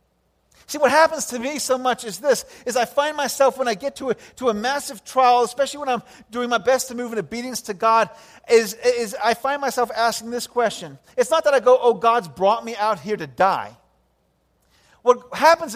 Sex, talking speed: male, 215 wpm